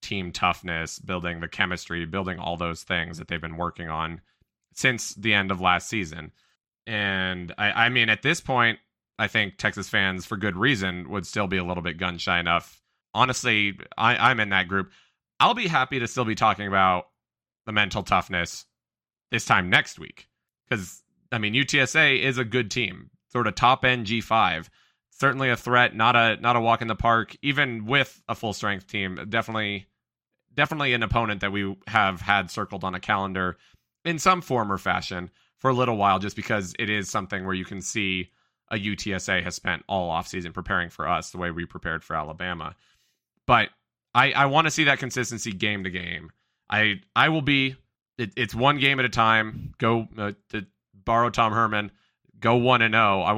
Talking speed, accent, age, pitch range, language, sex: 195 wpm, American, 20-39, 95-120 Hz, English, male